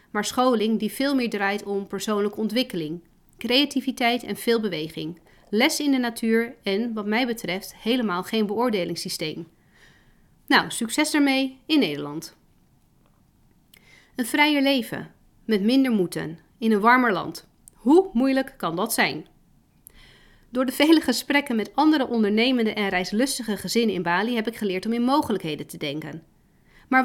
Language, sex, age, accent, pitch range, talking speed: Dutch, female, 40-59, Dutch, 195-265 Hz, 145 wpm